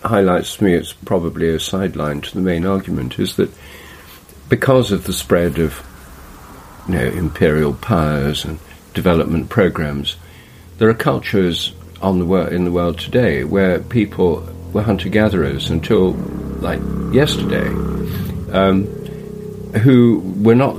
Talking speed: 135 wpm